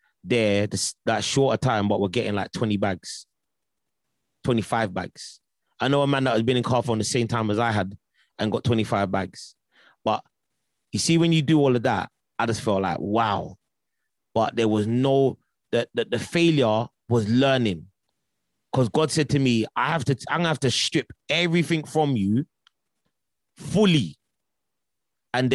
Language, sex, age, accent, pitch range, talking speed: English, male, 30-49, British, 115-150 Hz, 170 wpm